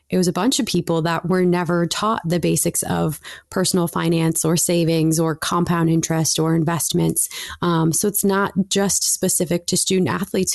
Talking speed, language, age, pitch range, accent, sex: 175 wpm, English, 20-39, 165-185 Hz, American, female